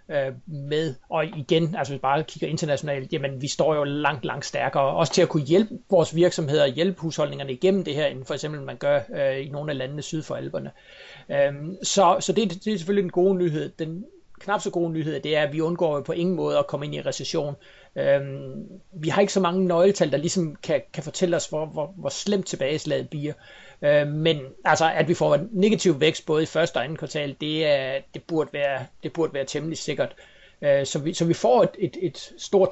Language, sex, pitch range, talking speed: Danish, male, 145-175 Hz, 225 wpm